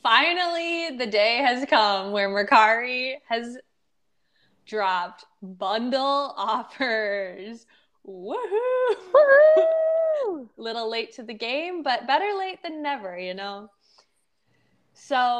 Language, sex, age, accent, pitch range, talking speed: English, female, 20-39, American, 200-270 Hz, 100 wpm